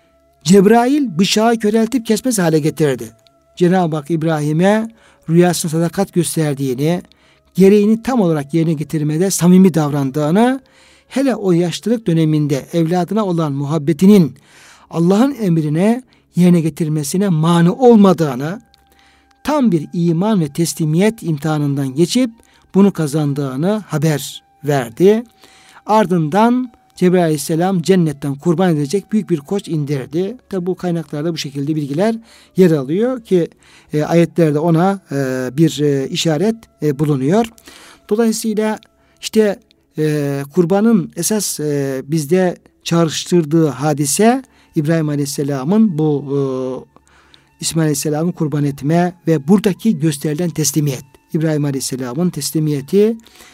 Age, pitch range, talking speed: 60-79, 150-200 Hz, 105 wpm